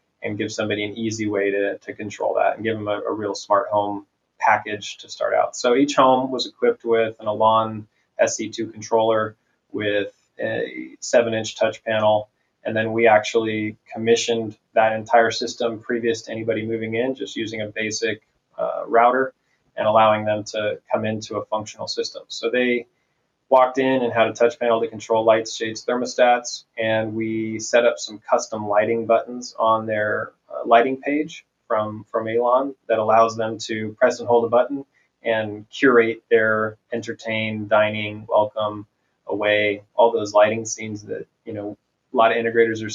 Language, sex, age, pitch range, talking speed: English, male, 20-39, 105-115 Hz, 175 wpm